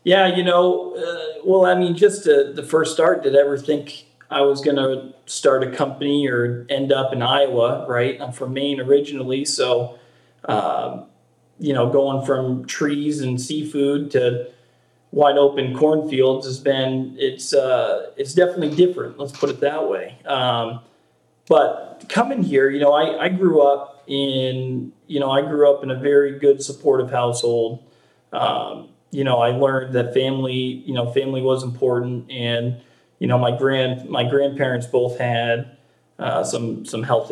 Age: 40-59